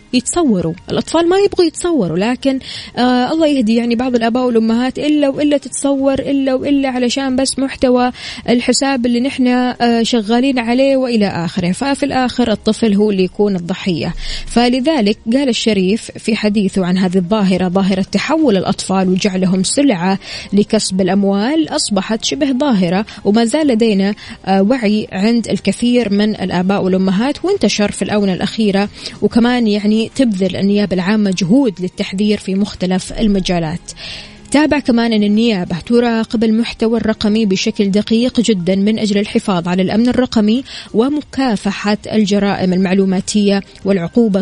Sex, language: female, Arabic